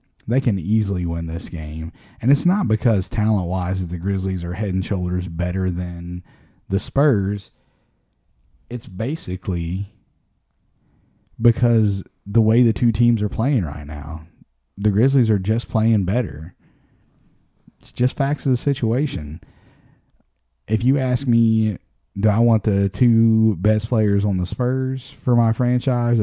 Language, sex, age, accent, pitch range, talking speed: English, male, 30-49, American, 95-120 Hz, 145 wpm